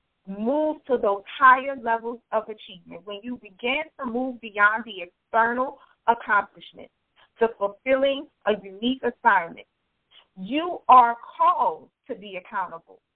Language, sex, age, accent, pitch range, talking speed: English, female, 40-59, American, 215-270 Hz, 125 wpm